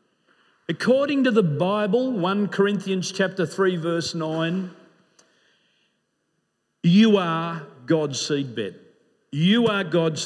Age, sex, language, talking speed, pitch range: 50-69, male, English, 100 wpm, 155-200 Hz